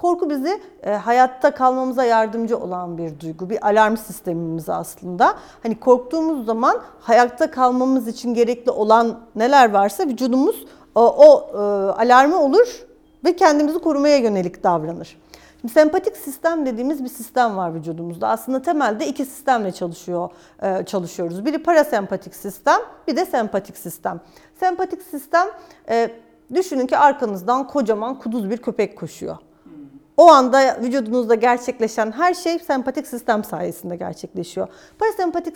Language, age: Turkish, 40-59